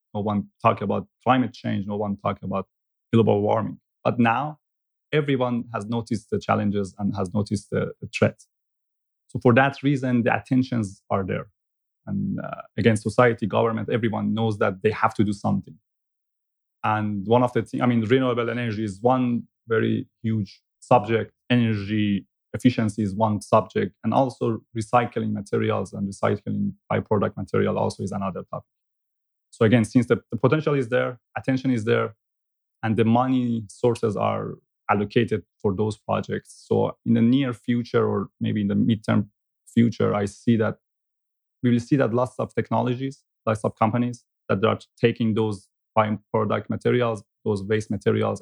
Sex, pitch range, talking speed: male, 105-120 Hz, 160 wpm